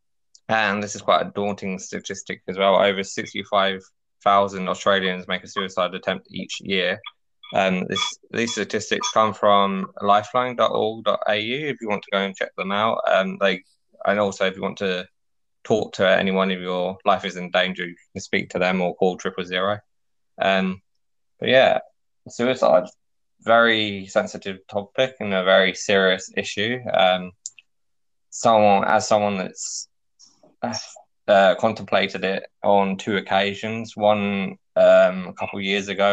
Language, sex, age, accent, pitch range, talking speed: English, male, 20-39, British, 95-105 Hz, 150 wpm